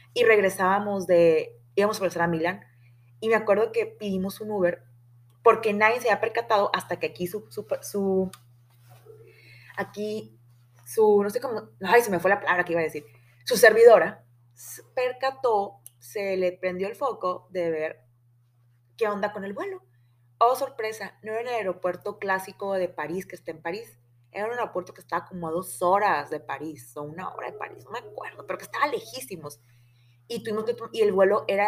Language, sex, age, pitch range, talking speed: Spanish, female, 20-39, 125-210 Hz, 190 wpm